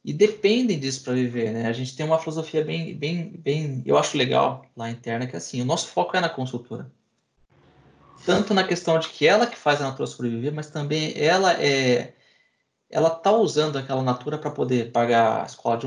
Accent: Brazilian